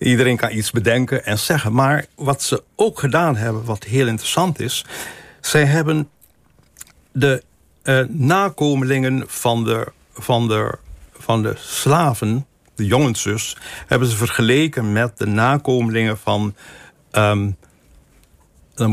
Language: Dutch